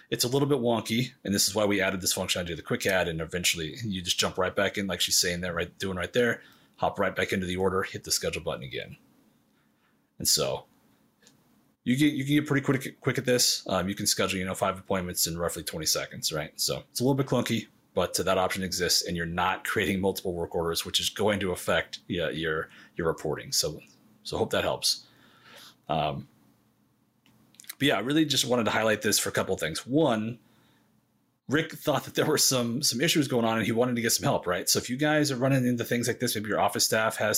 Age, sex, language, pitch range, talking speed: 30-49, male, English, 95-130 Hz, 240 wpm